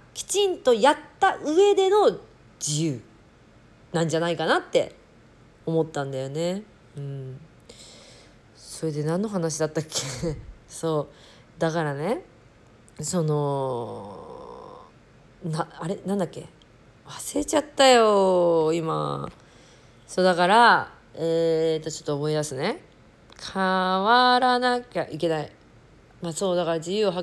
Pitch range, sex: 150-200 Hz, female